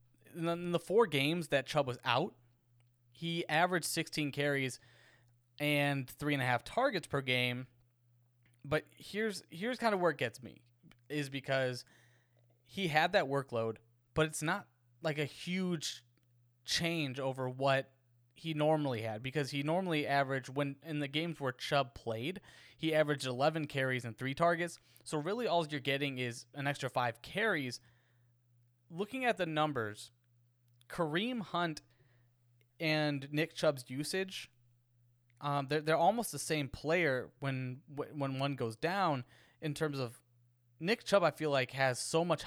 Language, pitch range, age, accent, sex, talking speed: English, 120-155 Hz, 20-39, American, male, 150 wpm